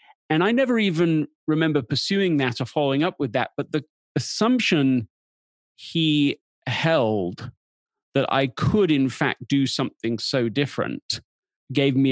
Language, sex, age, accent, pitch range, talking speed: English, male, 40-59, British, 110-145 Hz, 140 wpm